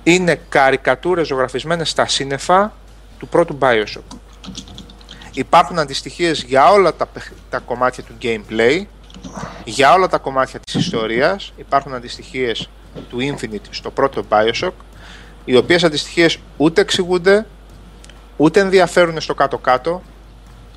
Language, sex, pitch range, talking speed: Greek, male, 125-170 Hz, 110 wpm